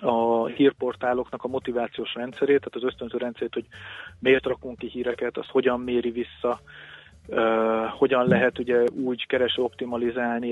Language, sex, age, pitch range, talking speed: Hungarian, male, 30-49, 120-130 Hz, 130 wpm